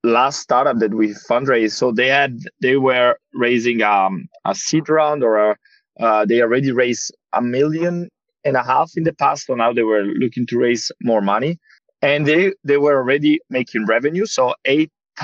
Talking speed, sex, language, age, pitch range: 185 wpm, male, English, 20-39, 120-160 Hz